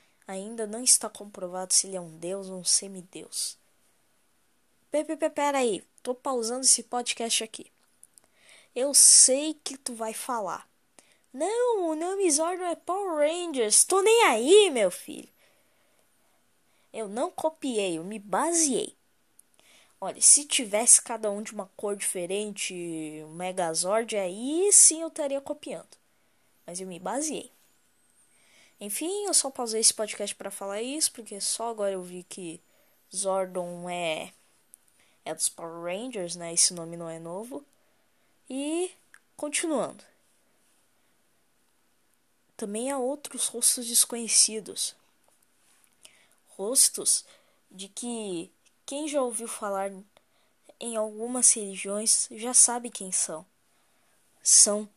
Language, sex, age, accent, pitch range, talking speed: Portuguese, female, 10-29, Brazilian, 190-285 Hz, 120 wpm